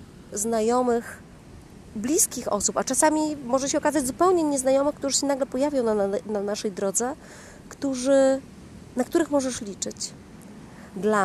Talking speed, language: 135 wpm, Polish